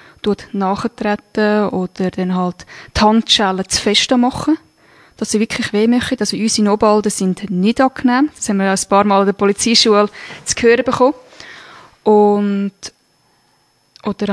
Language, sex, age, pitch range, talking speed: German, female, 20-39, 190-235 Hz, 145 wpm